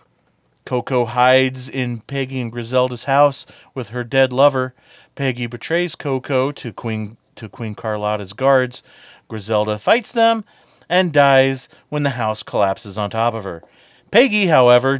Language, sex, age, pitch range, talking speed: English, male, 40-59, 110-145 Hz, 140 wpm